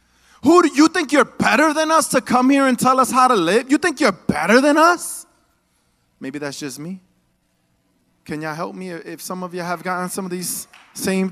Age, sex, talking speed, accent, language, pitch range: 30-49, male, 215 wpm, American, English, 220-310 Hz